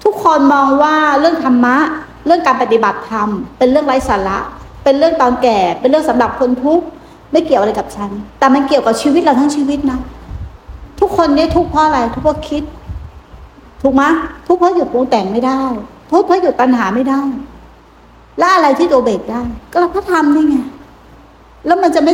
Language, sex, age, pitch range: Thai, female, 60-79, 240-305 Hz